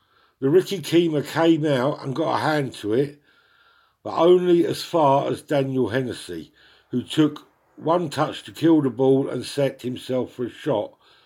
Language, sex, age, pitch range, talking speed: English, male, 50-69, 125-150 Hz, 170 wpm